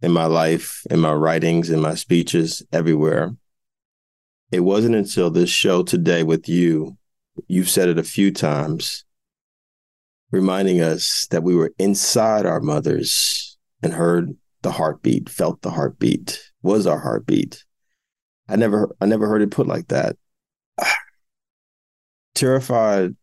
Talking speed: 135 wpm